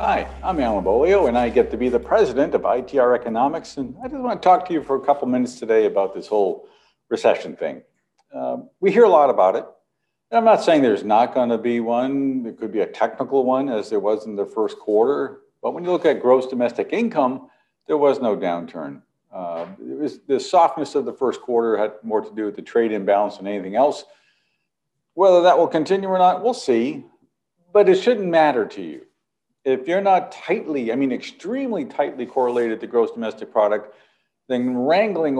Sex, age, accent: male, 50-69, American